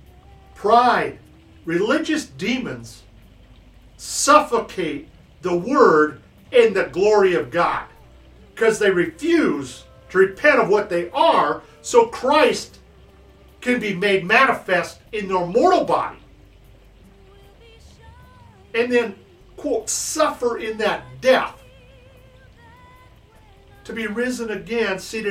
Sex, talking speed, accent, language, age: male, 100 wpm, American, English, 50-69